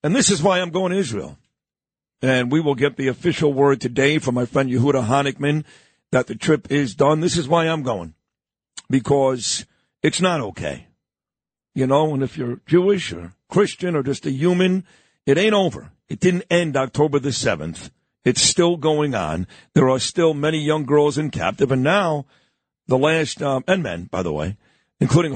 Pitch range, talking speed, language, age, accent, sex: 135-165 Hz, 185 wpm, English, 50-69, American, male